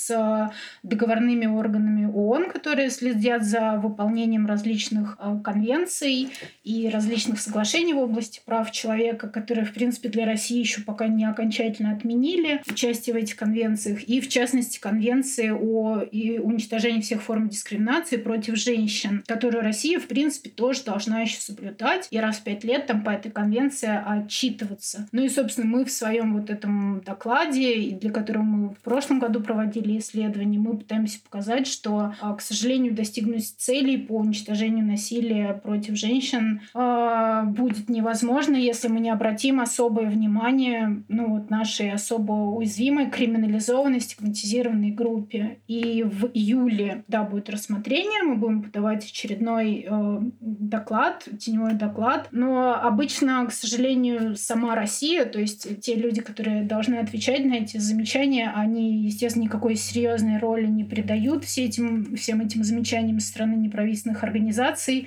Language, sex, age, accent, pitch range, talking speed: Russian, female, 20-39, native, 215-240 Hz, 135 wpm